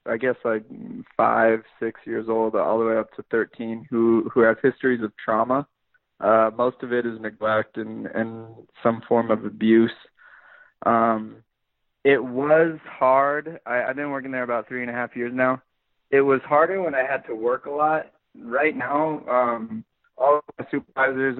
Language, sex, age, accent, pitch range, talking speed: English, male, 20-39, American, 110-130 Hz, 180 wpm